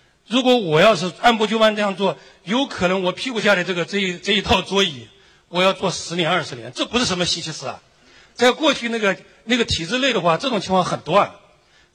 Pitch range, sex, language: 155-230 Hz, male, Chinese